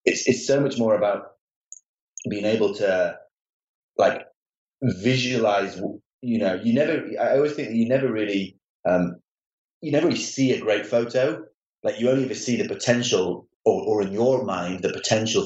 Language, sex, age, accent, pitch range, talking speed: English, male, 30-49, British, 105-140 Hz, 175 wpm